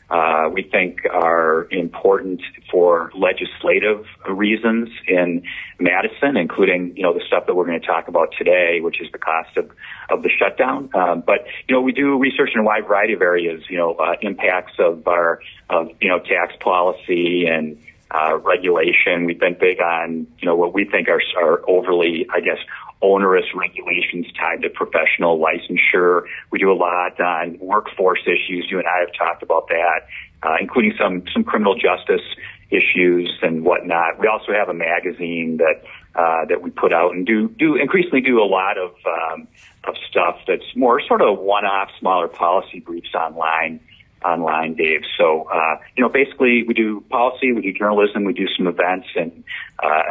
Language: English